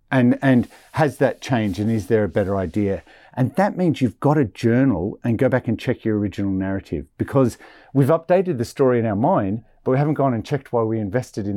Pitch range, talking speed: 100-135 Hz, 230 wpm